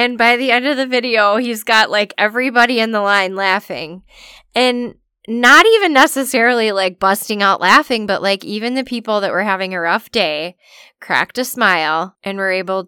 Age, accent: 10-29, American